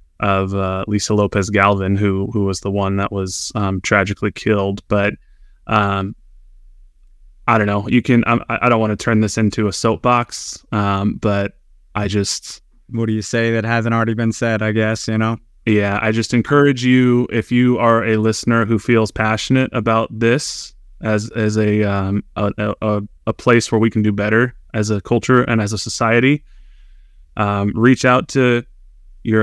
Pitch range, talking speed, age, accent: 105-120 Hz, 180 wpm, 20-39, American